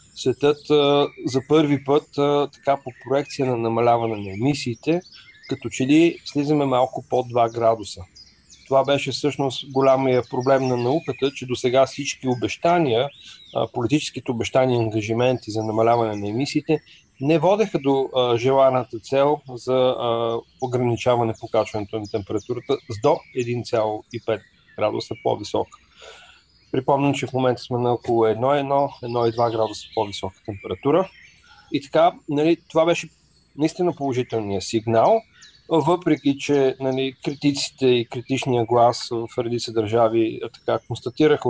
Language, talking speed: Bulgarian, 125 wpm